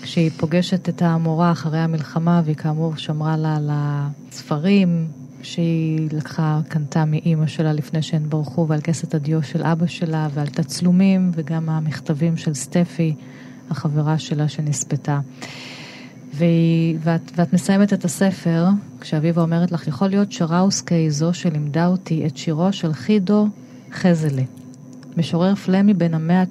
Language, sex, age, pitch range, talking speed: Hebrew, female, 30-49, 150-175 Hz, 135 wpm